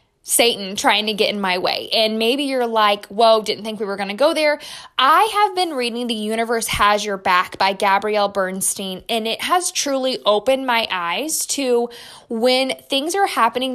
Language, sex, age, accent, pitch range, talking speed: English, female, 10-29, American, 210-265 Hz, 190 wpm